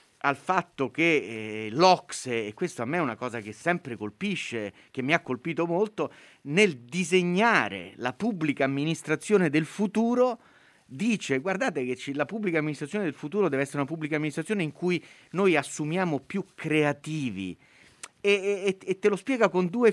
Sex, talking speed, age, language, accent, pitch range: male, 165 wpm, 30-49, Italian, native, 140-200 Hz